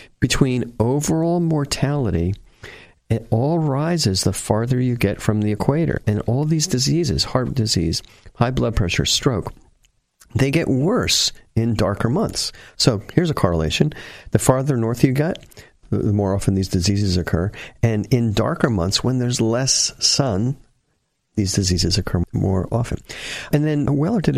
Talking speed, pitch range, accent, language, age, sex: 150 wpm, 95-130 Hz, American, English, 50-69, male